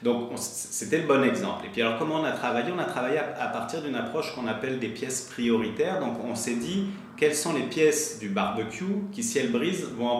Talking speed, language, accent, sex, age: 240 wpm, French, French, male, 30-49